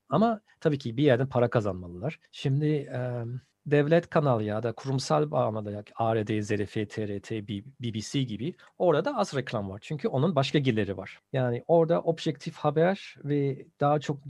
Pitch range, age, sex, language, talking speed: 125-165 Hz, 50-69, male, Turkish, 150 wpm